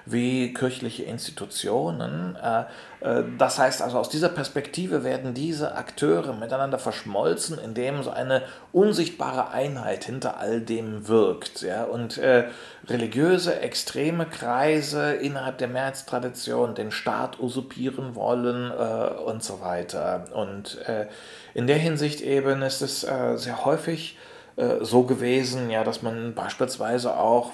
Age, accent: 40-59, German